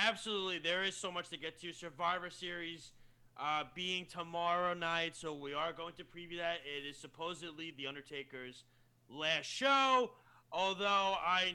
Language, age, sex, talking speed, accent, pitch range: English, 30-49, male, 155 wpm, American, 135-175 Hz